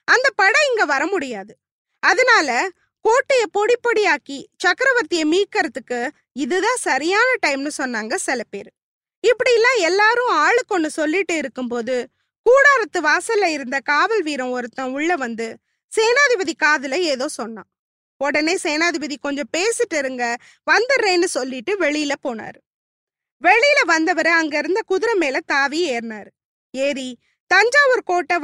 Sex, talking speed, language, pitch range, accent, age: female, 110 wpm, Tamil, 280-395 Hz, native, 20-39